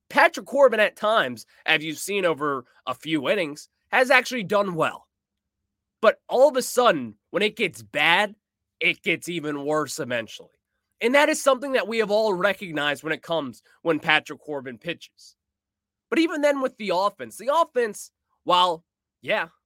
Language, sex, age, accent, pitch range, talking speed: English, male, 20-39, American, 150-225 Hz, 170 wpm